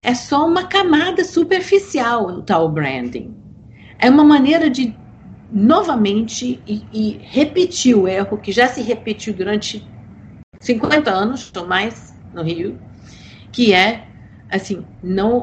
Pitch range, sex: 160-225 Hz, female